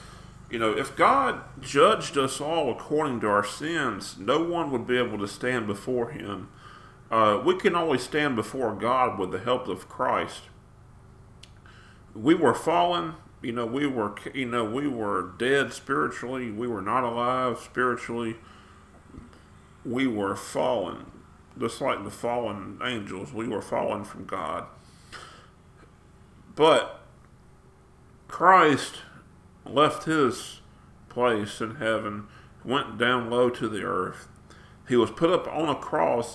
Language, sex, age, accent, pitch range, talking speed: English, male, 40-59, American, 105-125 Hz, 135 wpm